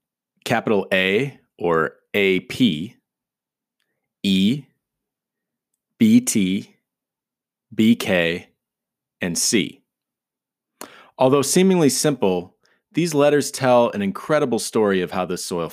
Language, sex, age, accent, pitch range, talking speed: English, male, 30-49, American, 95-135 Hz, 85 wpm